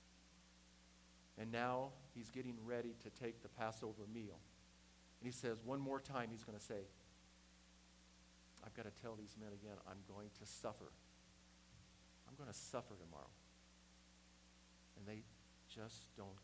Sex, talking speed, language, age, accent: male, 145 wpm, English, 50-69, American